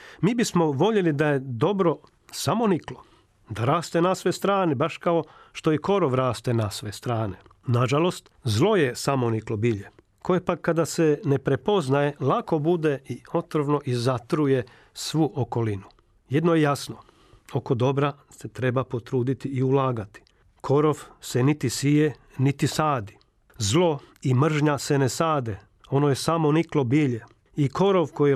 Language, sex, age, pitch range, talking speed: Croatian, male, 40-59, 125-155 Hz, 145 wpm